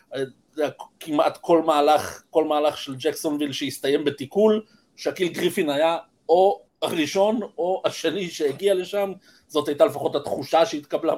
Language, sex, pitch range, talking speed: Hebrew, male, 145-190 Hz, 125 wpm